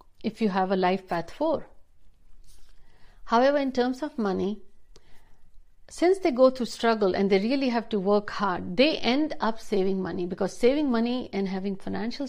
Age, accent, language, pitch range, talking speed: 60-79, native, Hindi, 190-235 Hz, 170 wpm